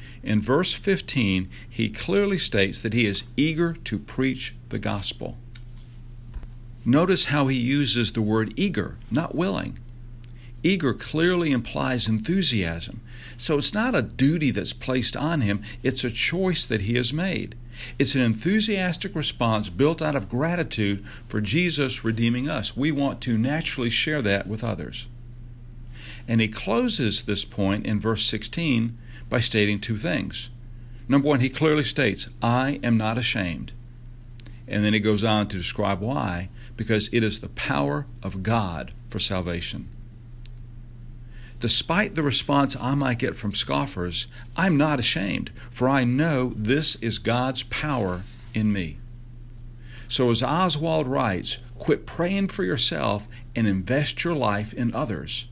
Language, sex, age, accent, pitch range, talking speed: English, male, 60-79, American, 110-135 Hz, 145 wpm